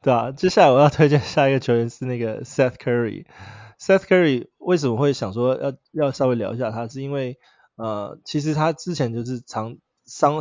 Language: Chinese